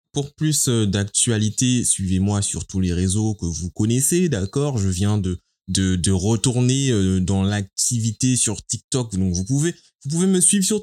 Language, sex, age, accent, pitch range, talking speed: French, male, 20-39, French, 90-115 Hz, 165 wpm